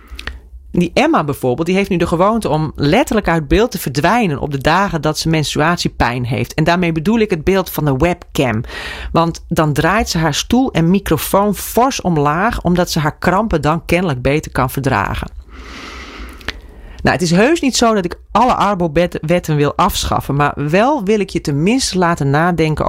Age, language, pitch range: 40-59, Dutch, 140-195 Hz